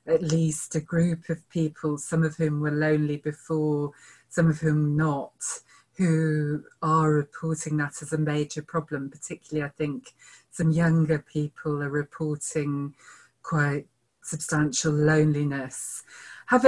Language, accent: English, British